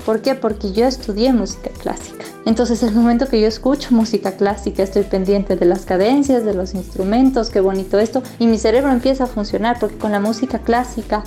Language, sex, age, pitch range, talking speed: Spanish, female, 20-39, 210-245 Hz, 195 wpm